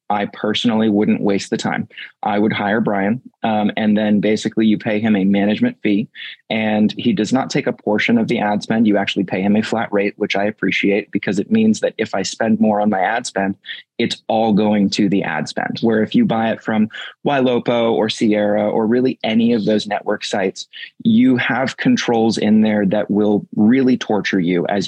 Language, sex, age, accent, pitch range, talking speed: English, male, 20-39, American, 100-110 Hz, 210 wpm